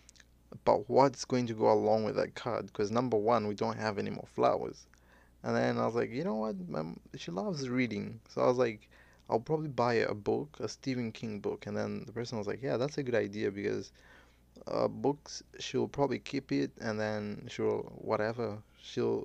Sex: male